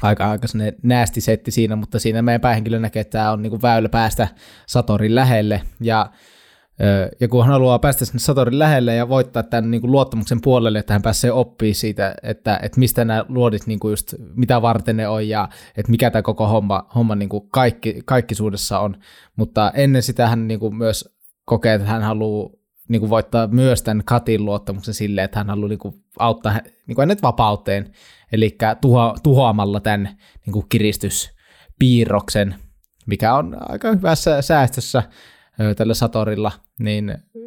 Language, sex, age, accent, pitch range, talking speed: Finnish, male, 20-39, native, 105-125 Hz, 160 wpm